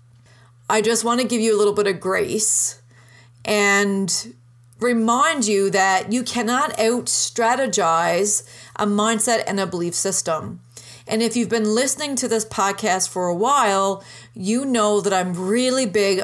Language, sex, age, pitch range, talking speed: English, female, 30-49, 185-225 Hz, 150 wpm